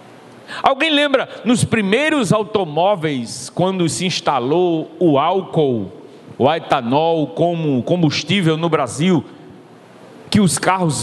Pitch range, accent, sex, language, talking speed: 155-235 Hz, Brazilian, male, Portuguese, 105 wpm